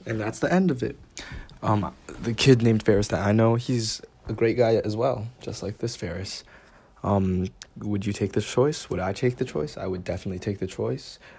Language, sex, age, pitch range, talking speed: English, male, 20-39, 95-115 Hz, 215 wpm